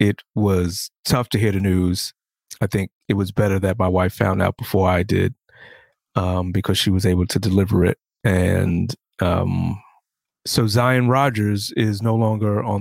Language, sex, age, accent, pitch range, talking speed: English, male, 30-49, American, 90-110 Hz, 175 wpm